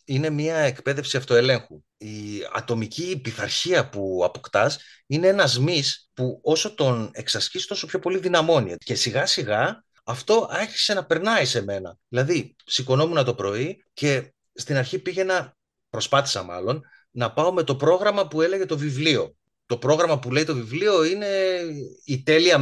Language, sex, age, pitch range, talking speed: Greek, male, 30-49, 120-170 Hz, 150 wpm